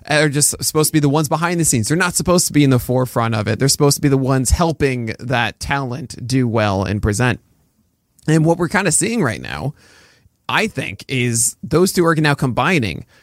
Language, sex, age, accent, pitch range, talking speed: English, male, 20-39, American, 115-150 Hz, 220 wpm